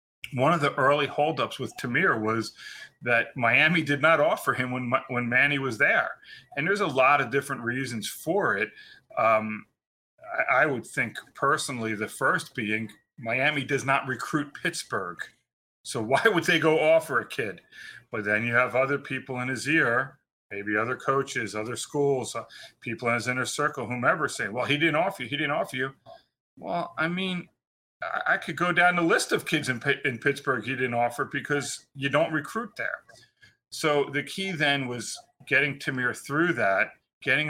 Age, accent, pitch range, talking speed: 40-59, American, 115-145 Hz, 180 wpm